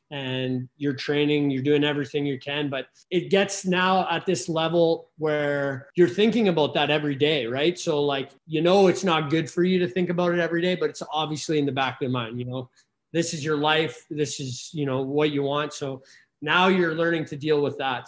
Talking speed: 225 wpm